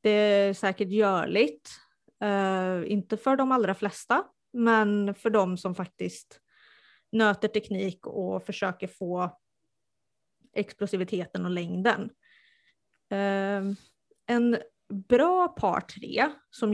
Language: Swedish